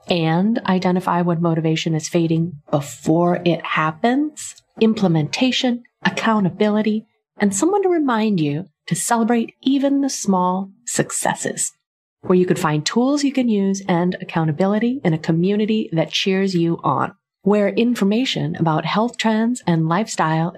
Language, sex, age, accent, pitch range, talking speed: English, female, 30-49, American, 160-220 Hz, 135 wpm